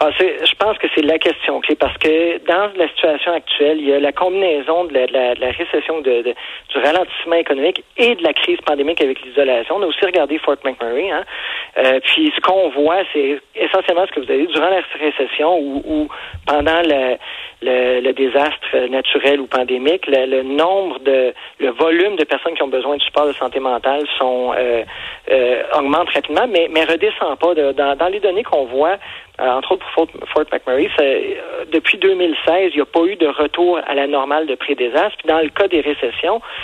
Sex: male